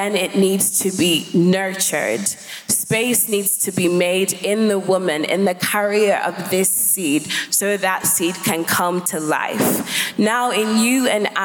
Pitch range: 175-210 Hz